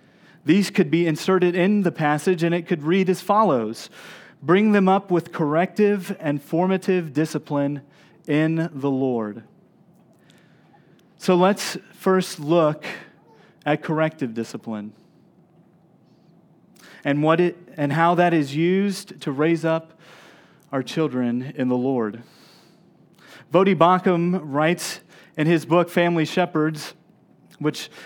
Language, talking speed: English, 120 wpm